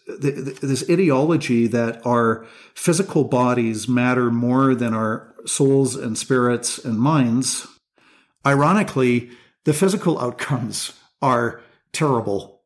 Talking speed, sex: 100 wpm, male